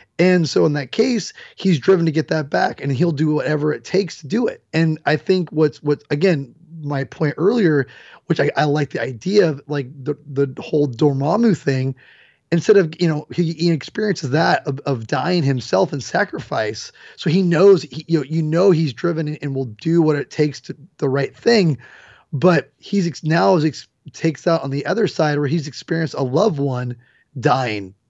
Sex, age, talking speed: male, 30-49, 205 wpm